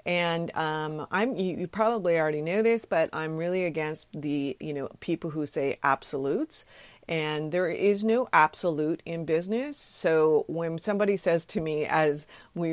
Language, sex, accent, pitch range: English, female, American, 155-205 Hz